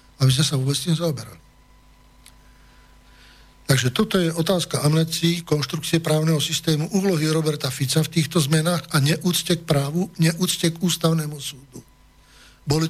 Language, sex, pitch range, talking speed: Slovak, male, 135-165 Hz, 135 wpm